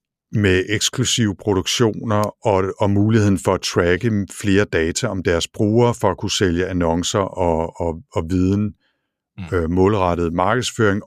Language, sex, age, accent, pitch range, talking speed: English, male, 60-79, Danish, 90-105 Hz, 140 wpm